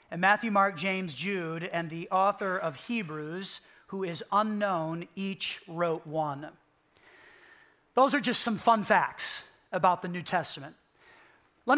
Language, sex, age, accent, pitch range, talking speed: English, male, 40-59, American, 180-230 Hz, 140 wpm